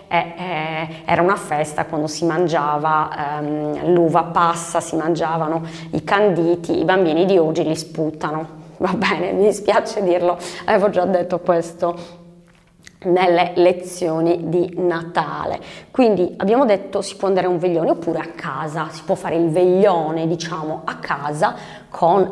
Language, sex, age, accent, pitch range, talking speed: Italian, female, 20-39, native, 165-190 Hz, 150 wpm